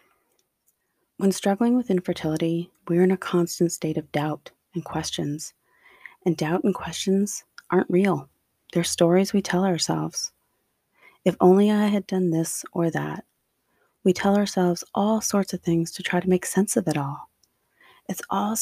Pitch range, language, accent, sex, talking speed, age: 170-200 Hz, English, American, female, 160 wpm, 30-49